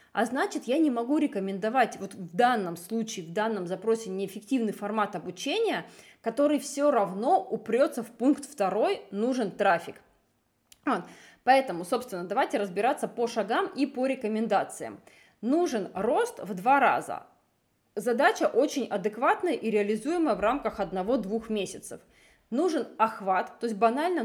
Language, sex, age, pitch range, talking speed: Russian, female, 20-39, 205-280 Hz, 130 wpm